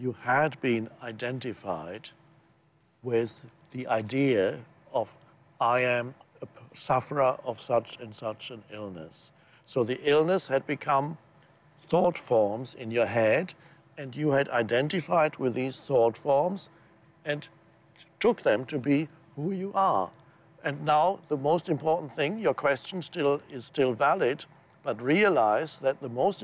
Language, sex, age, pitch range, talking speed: English, male, 60-79, 125-160 Hz, 135 wpm